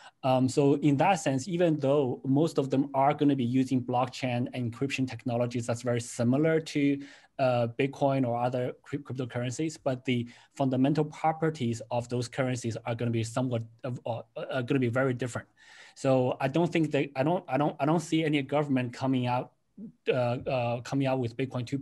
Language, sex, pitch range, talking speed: English, male, 125-145 Hz, 195 wpm